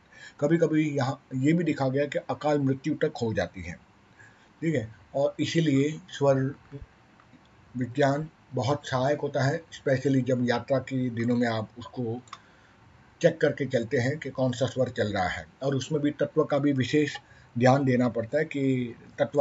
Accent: native